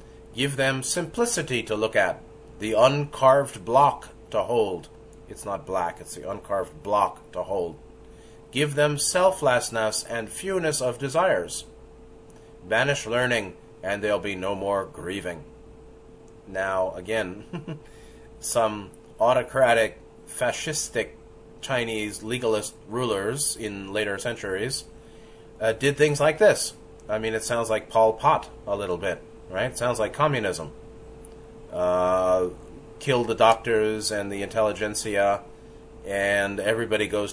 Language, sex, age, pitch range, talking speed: English, male, 30-49, 95-120 Hz, 120 wpm